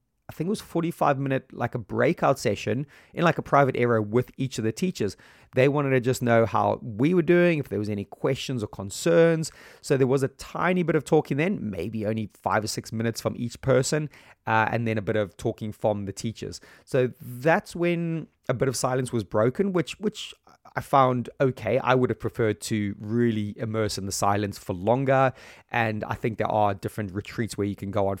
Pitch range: 105-135 Hz